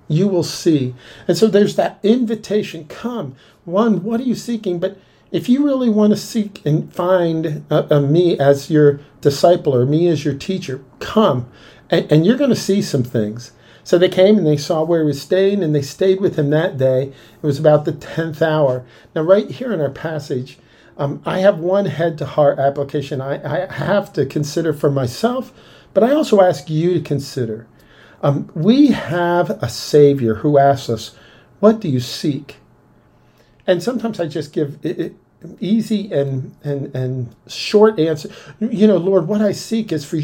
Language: English